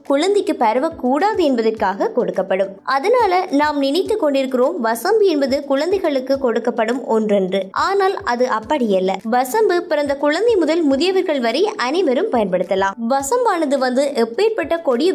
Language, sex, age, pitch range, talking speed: English, male, 20-39, 245-345 Hz, 175 wpm